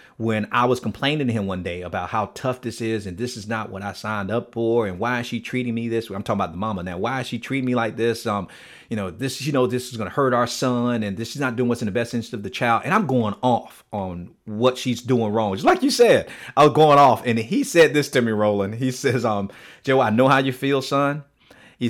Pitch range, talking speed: 105-130 Hz, 285 wpm